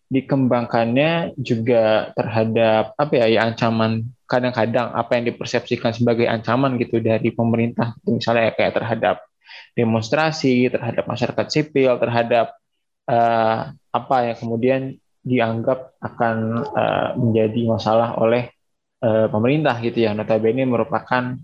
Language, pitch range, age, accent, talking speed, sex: Indonesian, 115-125 Hz, 20-39, native, 115 wpm, male